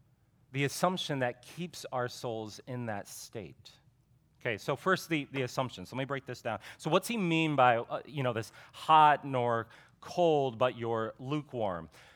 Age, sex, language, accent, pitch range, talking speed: 30-49, male, English, American, 120-155 Hz, 175 wpm